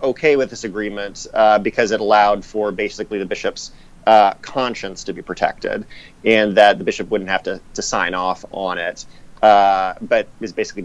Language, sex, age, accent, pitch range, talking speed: English, male, 30-49, American, 100-130 Hz, 185 wpm